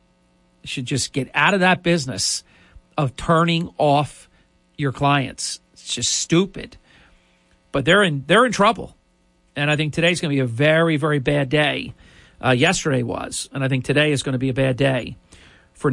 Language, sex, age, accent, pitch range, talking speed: English, male, 50-69, American, 130-170 Hz, 180 wpm